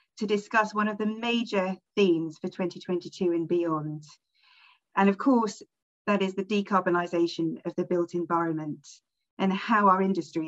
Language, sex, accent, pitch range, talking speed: English, female, British, 170-200 Hz, 150 wpm